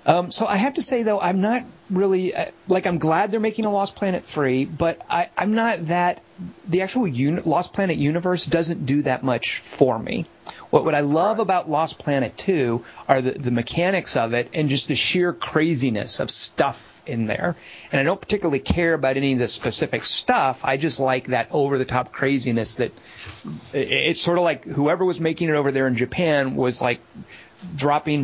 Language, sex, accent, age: English, male, American, 40-59